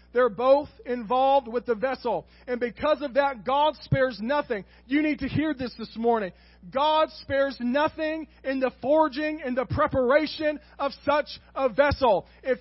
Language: English